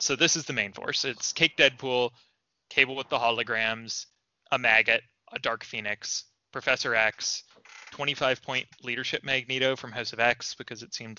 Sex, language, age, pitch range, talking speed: male, English, 20-39, 115-135 Hz, 165 wpm